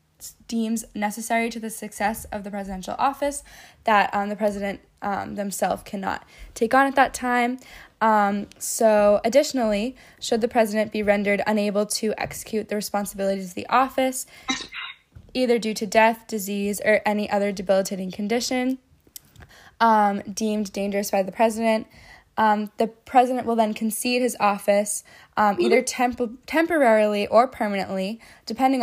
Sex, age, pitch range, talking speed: female, 10-29, 200-235 Hz, 140 wpm